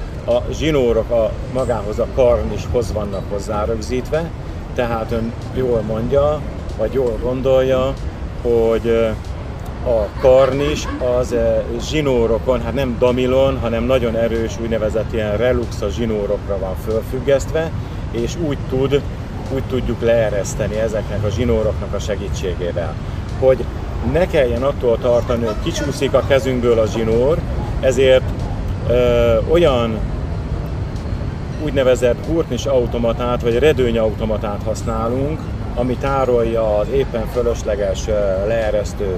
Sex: male